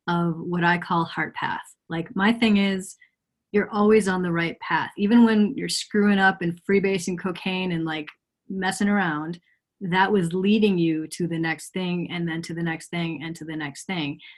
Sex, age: female, 30-49